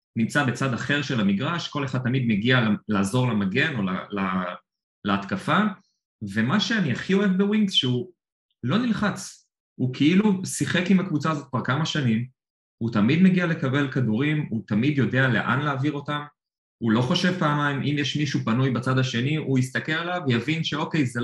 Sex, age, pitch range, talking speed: male, 30-49, 115-155 Hz, 160 wpm